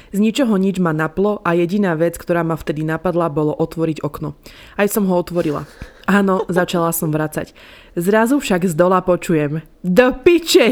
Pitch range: 185-295 Hz